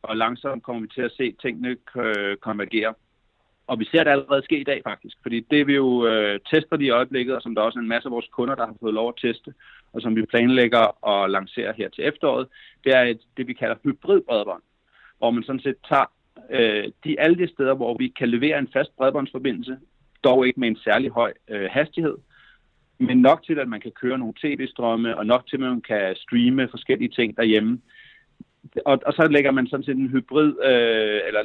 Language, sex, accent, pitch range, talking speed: Danish, male, native, 110-135 Hz, 215 wpm